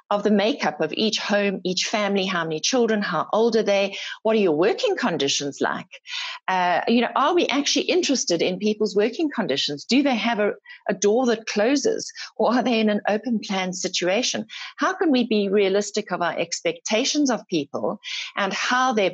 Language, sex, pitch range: English, female, 185-245 Hz